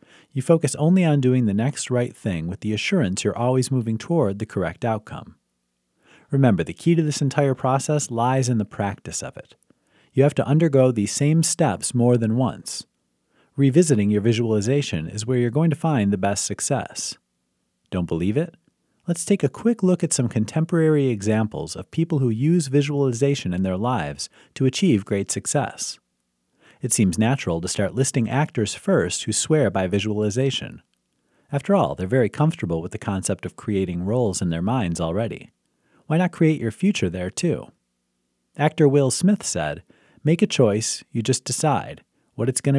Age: 40-59